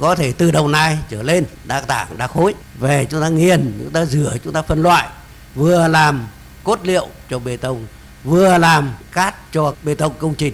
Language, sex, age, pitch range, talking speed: Vietnamese, male, 60-79, 175-275 Hz, 210 wpm